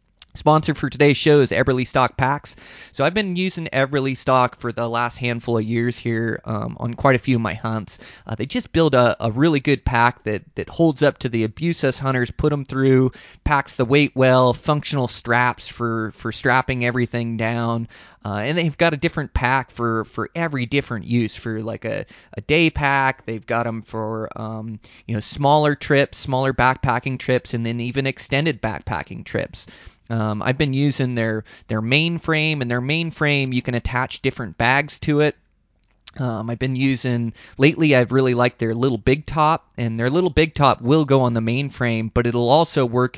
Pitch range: 115-135 Hz